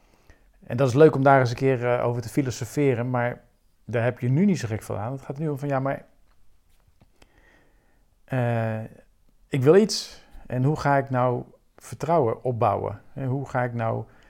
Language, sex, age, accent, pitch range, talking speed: Dutch, male, 50-69, Dutch, 105-140 Hz, 190 wpm